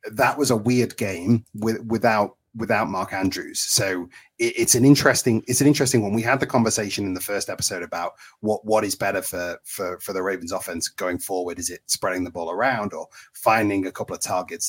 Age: 30-49